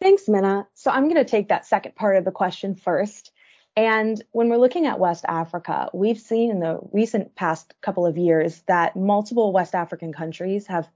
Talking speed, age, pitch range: 195 wpm, 20-39, 175-205 Hz